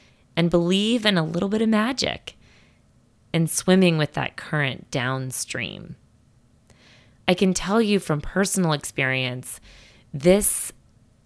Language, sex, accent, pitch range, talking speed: English, female, American, 140-185 Hz, 115 wpm